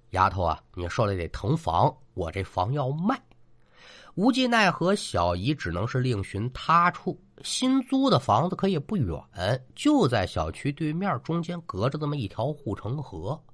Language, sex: Chinese, male